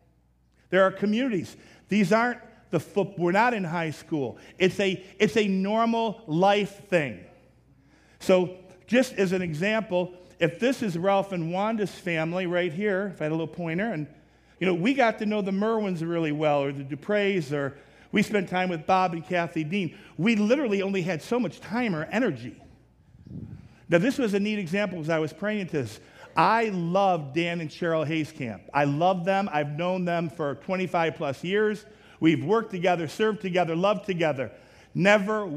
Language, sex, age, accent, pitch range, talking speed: English, male, 50-69, American, 150-200 Hz, 180 wpm